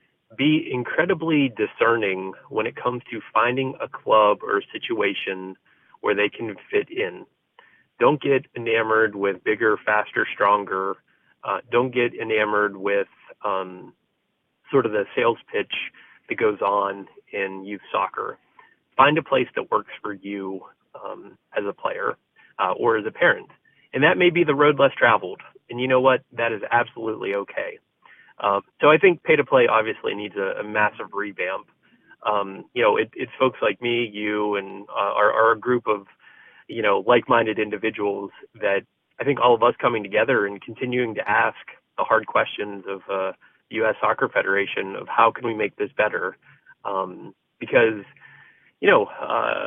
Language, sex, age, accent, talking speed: English, male, 30-49, American, 165 wpm